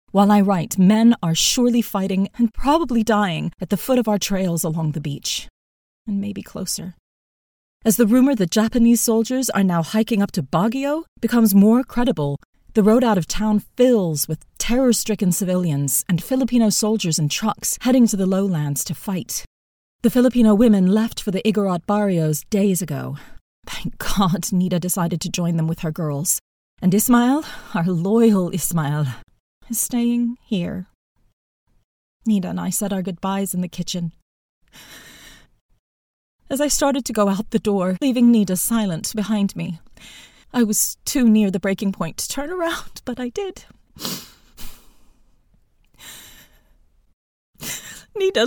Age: 30-49